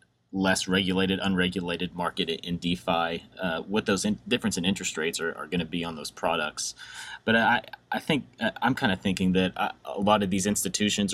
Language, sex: English, male